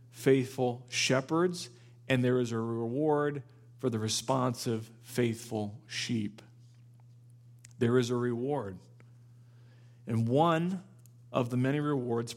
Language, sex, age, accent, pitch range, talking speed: English, male, 40-59, American, 120-130 Hz, 105 wpm